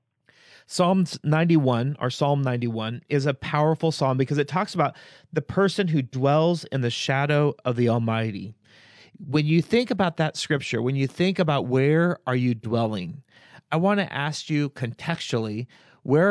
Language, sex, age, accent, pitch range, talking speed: English, male, 30-49, American, 125-160 Hz, 160 wpm